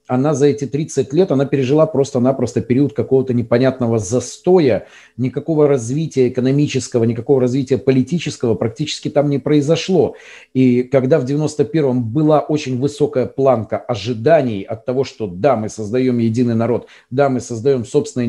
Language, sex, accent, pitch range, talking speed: Russian, male, native, 125-155 Hz, 140 wpm